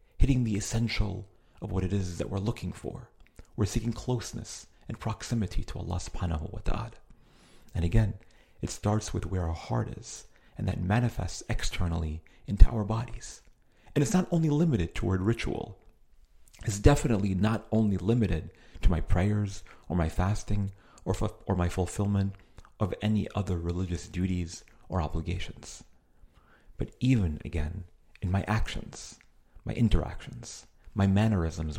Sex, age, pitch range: male, 40-59, 85-115 Hz